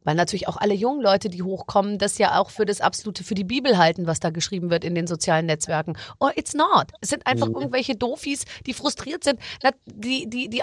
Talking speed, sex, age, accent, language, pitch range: 225 wpm, female, 40-59, German, German, 190-240 Hz